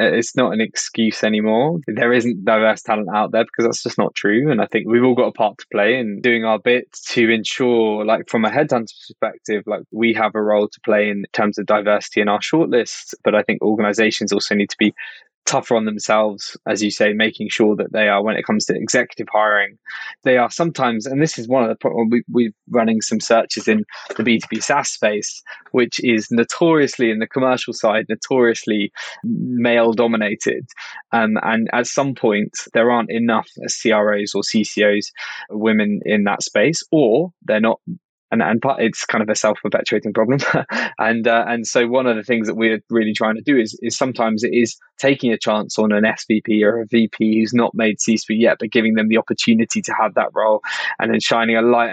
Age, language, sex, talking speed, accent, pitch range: 10-29, English, male, 210 wpm, British, 110-120 Hz